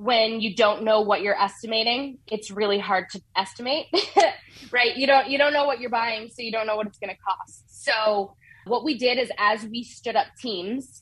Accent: American